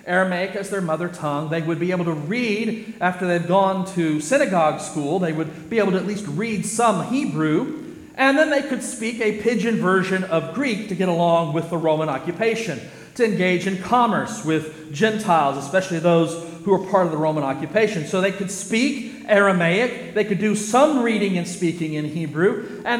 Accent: American